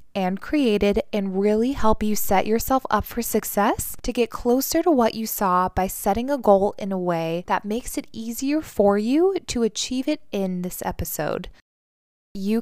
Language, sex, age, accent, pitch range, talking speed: English, female, 20-39, American, 195-265 Hz, 180 wpm